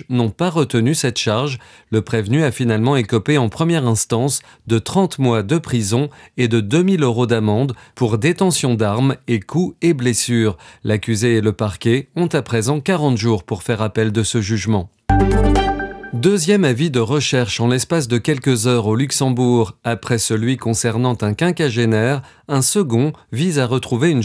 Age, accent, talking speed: 40-59, French, 165 wpm